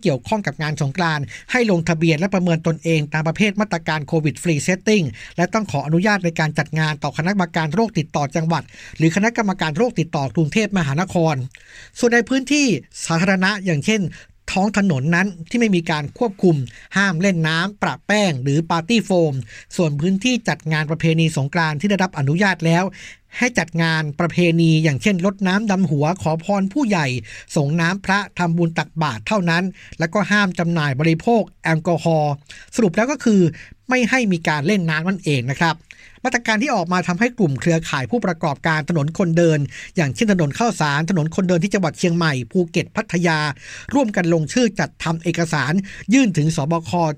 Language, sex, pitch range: Thai, male, 155-200 Hz